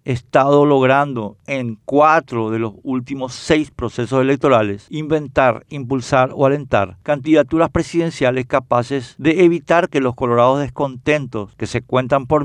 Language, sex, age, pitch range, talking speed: Spanish, male, 50-69, 125-165 Hz, 130 wpm